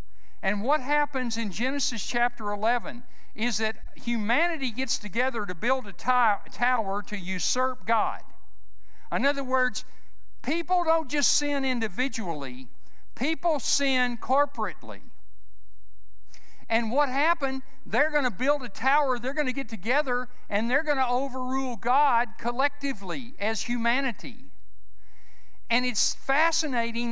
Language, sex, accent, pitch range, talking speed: English, male, American, 205-275 Hz, 125 wpm